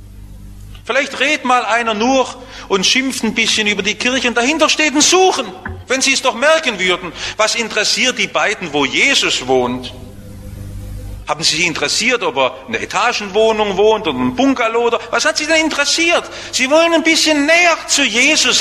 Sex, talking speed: male, 175 wpm